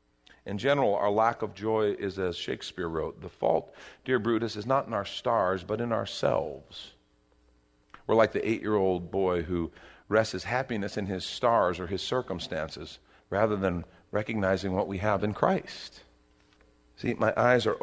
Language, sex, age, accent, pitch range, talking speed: English, male, 50-69, American, 80-110 Hz, 165 wpm